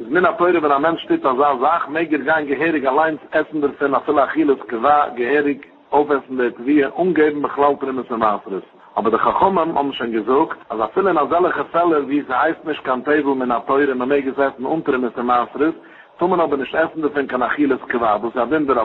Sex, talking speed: male, 120 wpm